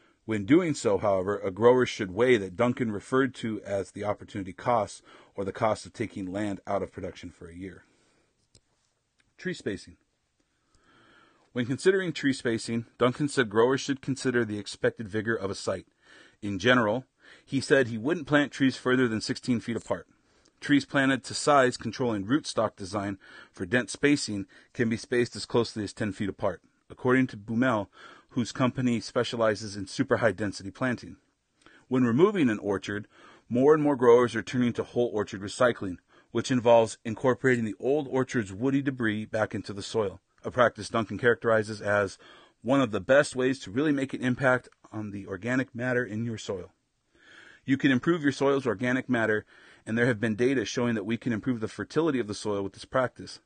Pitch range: 105-130 Hz